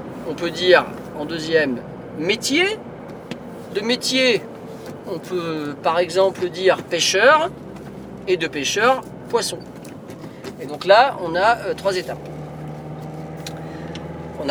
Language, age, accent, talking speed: French, 40-59, French, 110 wpm